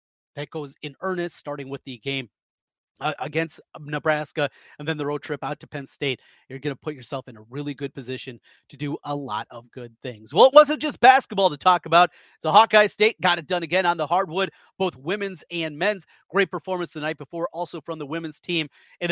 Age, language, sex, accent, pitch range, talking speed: 30-49, English, male, American, 140-175 Hz, 225 wpm